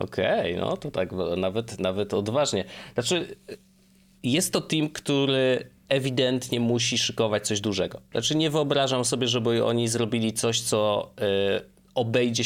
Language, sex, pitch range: Polish, male, 110-135 Hz